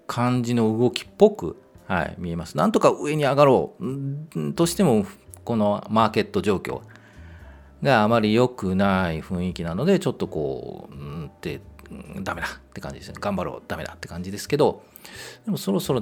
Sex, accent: male, native